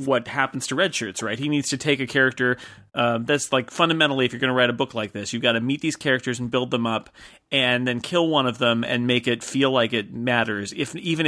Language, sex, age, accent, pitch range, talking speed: English, male, 30-49, American, 125-155 Hz, 260 wpm